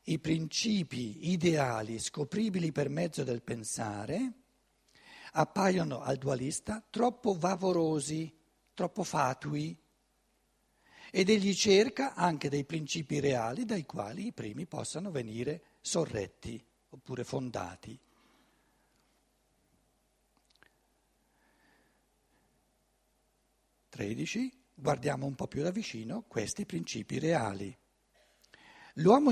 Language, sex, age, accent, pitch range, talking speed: Italian, male, 60-79, native, 125-180 Hz, 85 wpm